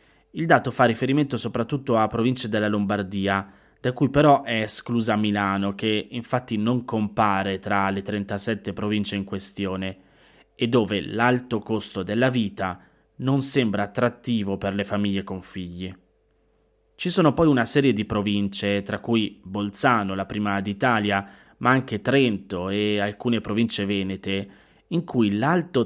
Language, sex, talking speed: Italian, male, 145 wpm